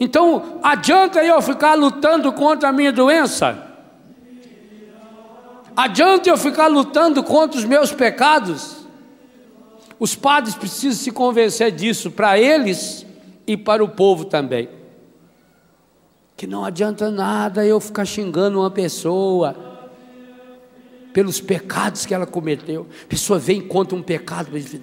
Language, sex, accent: Portuguese, male, Brazilian